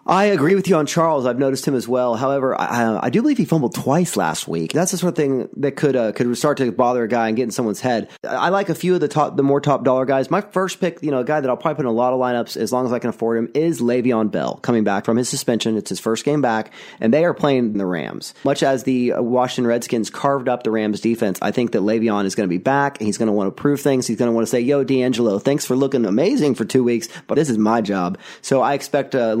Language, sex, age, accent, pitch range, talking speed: English, male, 30-49, American, 115-140 Hz, 300 wpm